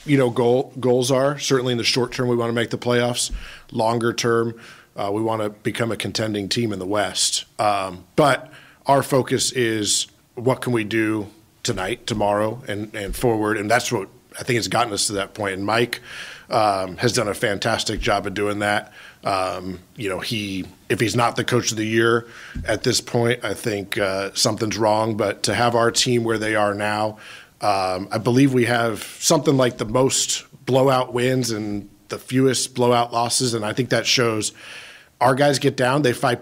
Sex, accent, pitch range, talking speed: male, American, 105-125 Hz, 200 wpm